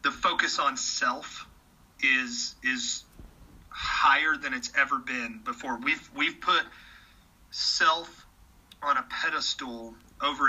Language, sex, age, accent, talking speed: English, male, 30-49, American, 115 wpm